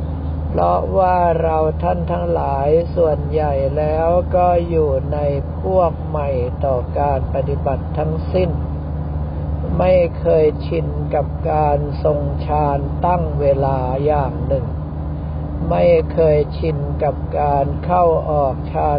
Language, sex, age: Thai, male, 60-79